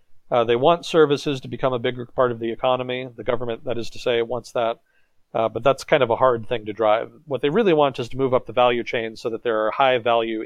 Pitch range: 115-135 Hz